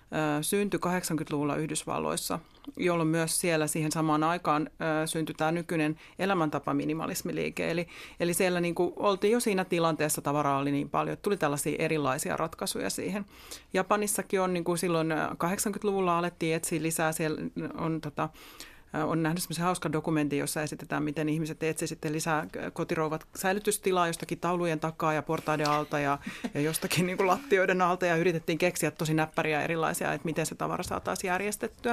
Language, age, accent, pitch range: Finnish, 30-49, native, 155-180 Hz